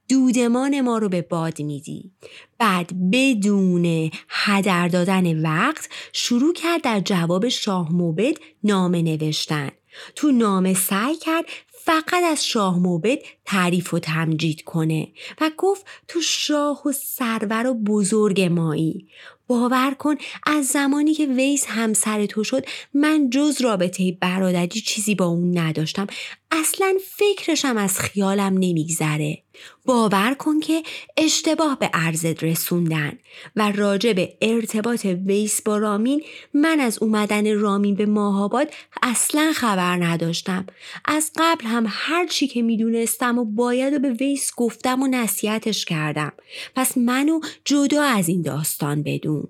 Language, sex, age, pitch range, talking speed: Persian, female, 30-49, 180-280 Hz, 130 wpm